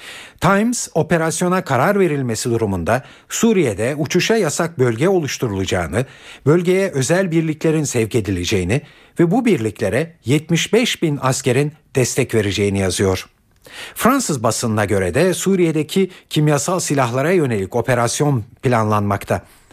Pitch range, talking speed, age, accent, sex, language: 105-160 Hz, 105 wpm, 60-79, native, male, Turkish